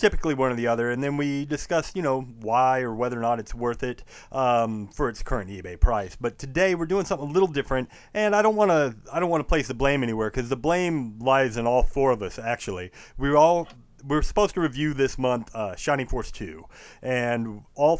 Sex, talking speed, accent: male, 240 wpm, American